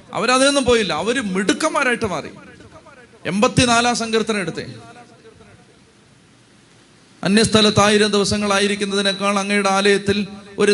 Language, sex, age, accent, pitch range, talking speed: Malayalam, male, 30-49, native, 180-210 Hz, 85 wpm